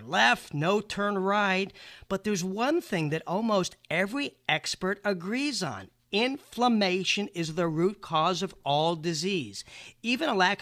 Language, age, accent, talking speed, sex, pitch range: English, 50-69, American, 140 wpm, male, 160-205 Hz